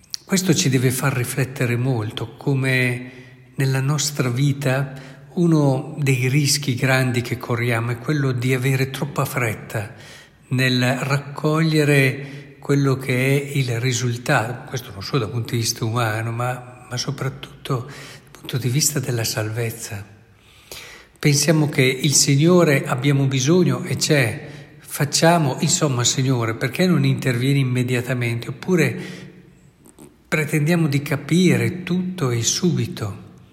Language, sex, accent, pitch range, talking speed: Italian, male, native, 125-145 Hz, 120 wpm